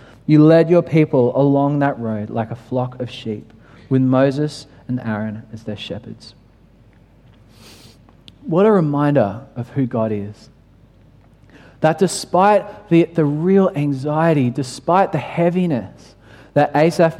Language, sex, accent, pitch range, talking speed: English, male, Australian, 115-155 Hz, 130 wpm